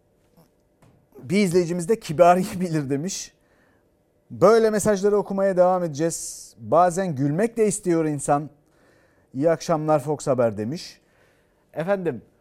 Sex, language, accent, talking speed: male, Turkish, native, 100 wpm